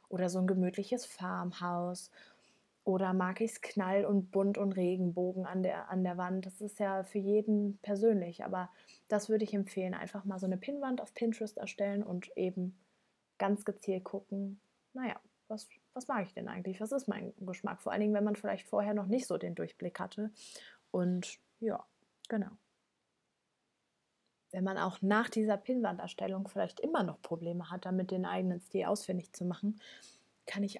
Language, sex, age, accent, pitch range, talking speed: German, female, 20-39, German, 185-210 Hz, 175 wpm